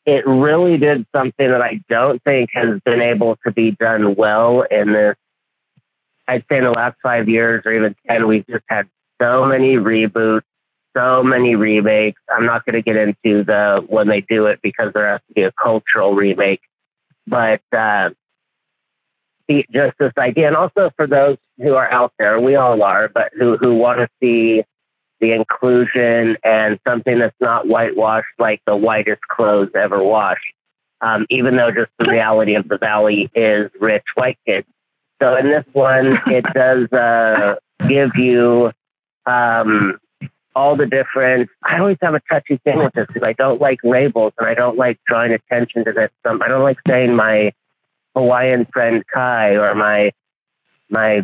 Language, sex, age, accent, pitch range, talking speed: English, male, 30-49, American, 110-130 Hz, 175 wpm